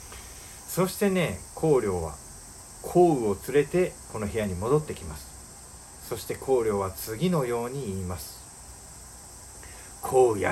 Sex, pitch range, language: male, 95-130 Hz, Japanese